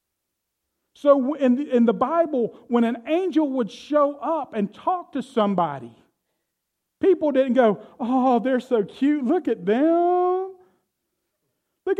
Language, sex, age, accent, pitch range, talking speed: English, male, 40-59, American, 230-310 Hz, 130 wpm